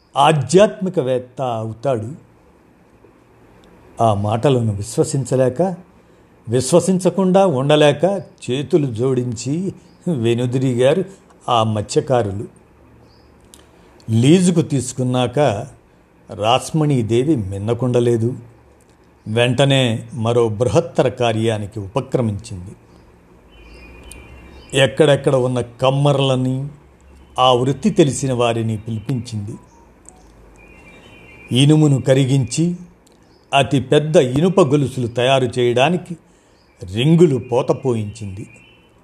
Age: 50-69